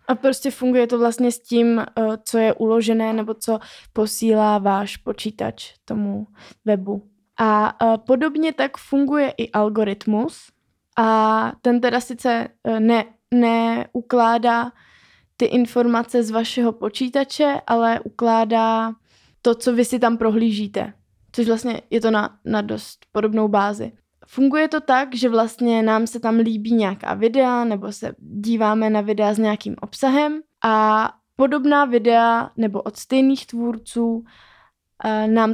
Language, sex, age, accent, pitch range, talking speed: Czech, female, 20-39, native, 220-240 Hz, 130 wpm